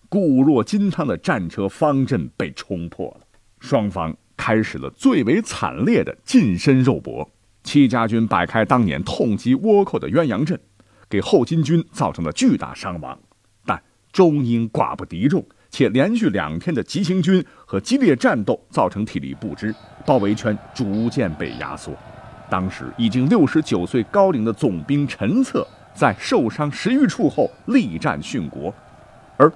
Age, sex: 50-69, male